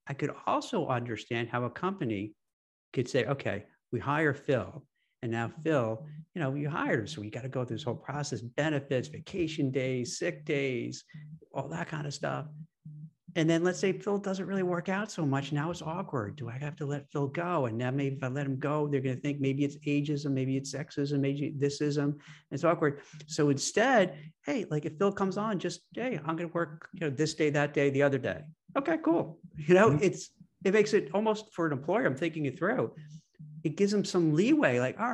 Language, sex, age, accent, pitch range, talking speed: English, male, 50-69, American, 135-180 Hz, 220 wpm